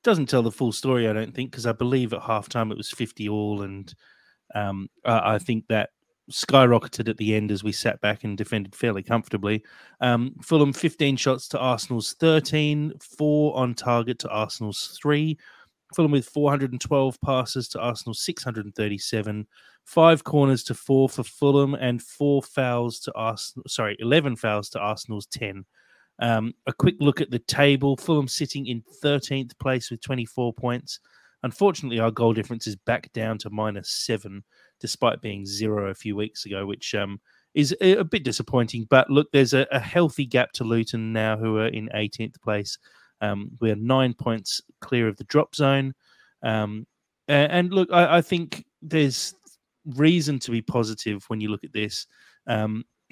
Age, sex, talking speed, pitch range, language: 30-49, male, 170 wpm, 110-140 Hz, English